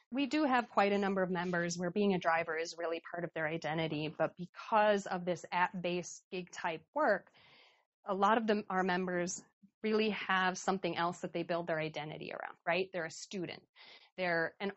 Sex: female